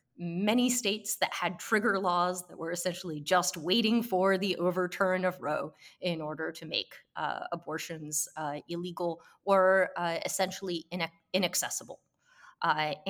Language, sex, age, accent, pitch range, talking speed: English, female, 30-49, American, 165-215 Hz, 135 wpm